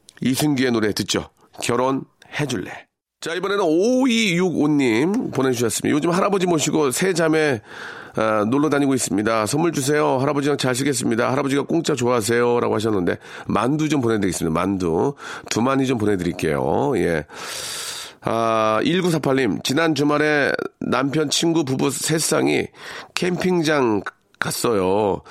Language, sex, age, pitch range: Korean, male, 40-59, 120-170 Hz